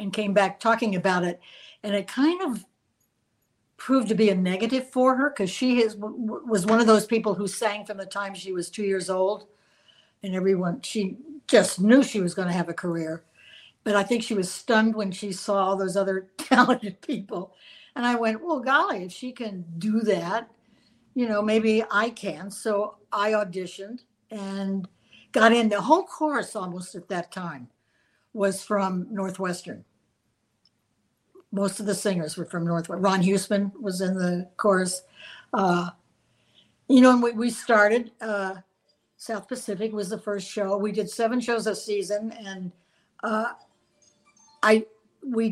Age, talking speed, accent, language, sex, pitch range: 60-79, 170 wpm, American, English, female, 190-225 Hz